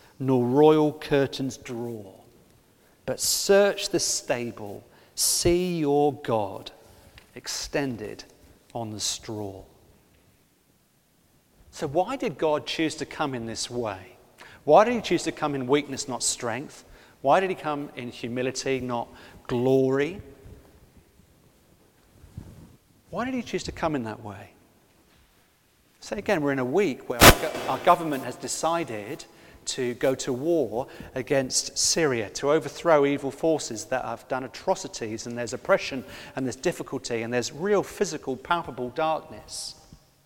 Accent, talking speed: British, 135 wpm